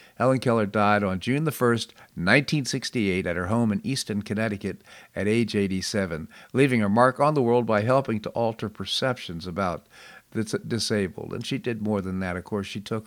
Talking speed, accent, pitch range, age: 190 wpm, American, 100-130 Hz, 50-69